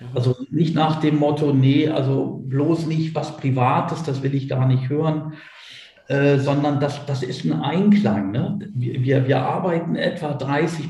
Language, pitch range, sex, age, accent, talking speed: German, 125-150 Hz, male, 50-69, German, 160 wpm